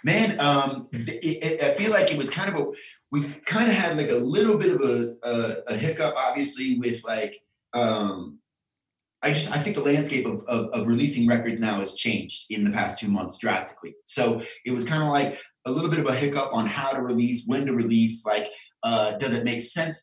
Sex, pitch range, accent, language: male, 110-145 Hz, American, English